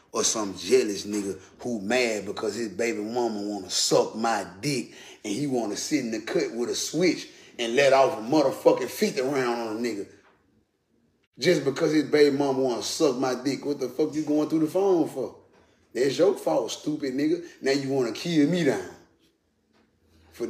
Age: 30-49